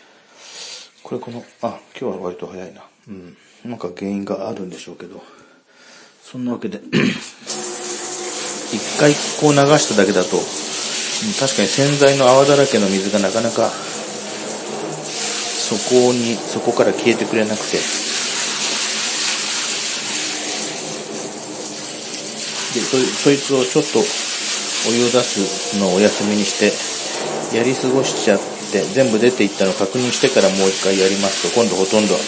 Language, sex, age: Japanese, male, 40-59